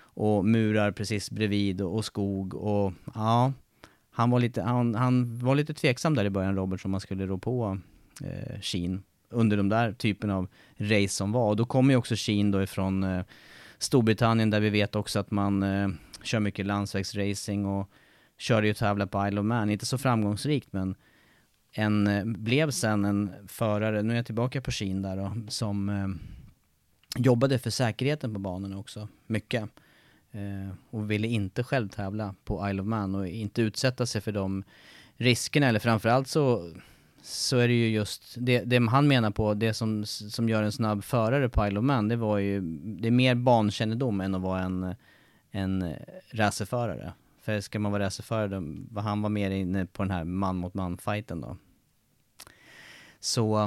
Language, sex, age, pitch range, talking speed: Swedish, male, 30-49, 100-120 Hz, 175 wpm